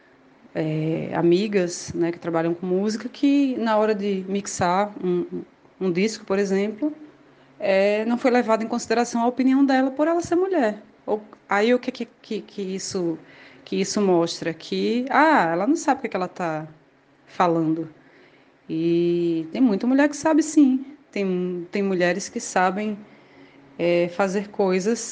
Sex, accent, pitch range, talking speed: female, Brazilian, 180-240 Hz, 160 wpm